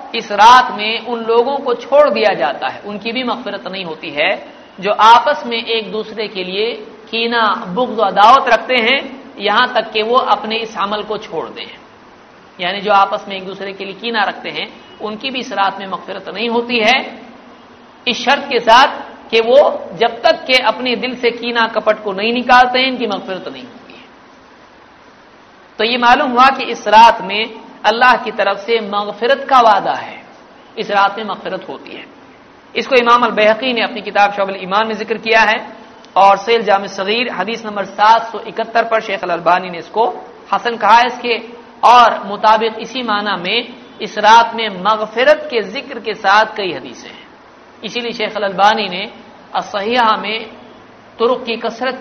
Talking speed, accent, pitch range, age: 180 wpm, native, 205-240 Hz, 50-69